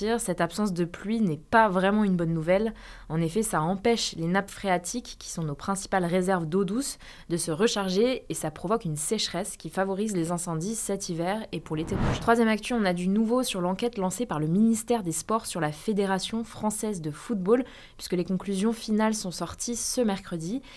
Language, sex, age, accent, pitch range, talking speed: French, female, 20-39, French, 170-215 Hz, 200 wpm